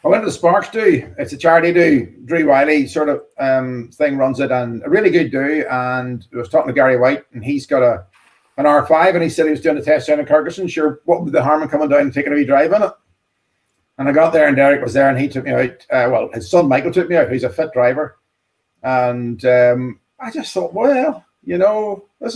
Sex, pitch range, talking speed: male, 130-160 Hz, 260 wpm